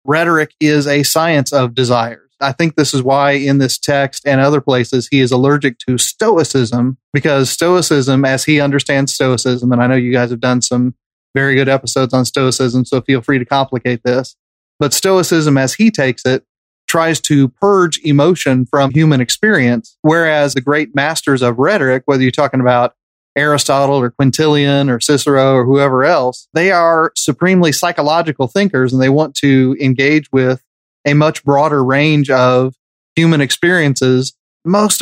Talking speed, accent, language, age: 165 wpm, American, English, 30-49